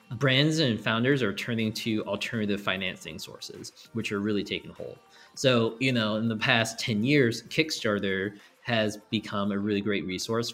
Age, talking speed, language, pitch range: 20-39, 165 wpm, English, 100-120 Hz